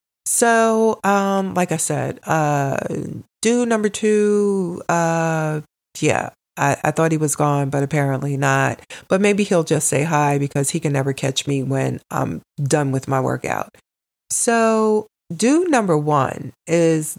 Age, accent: 40-59, American